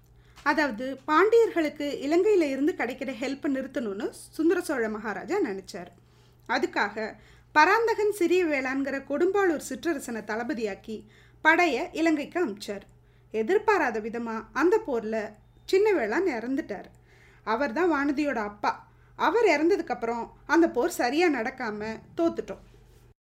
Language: Tamil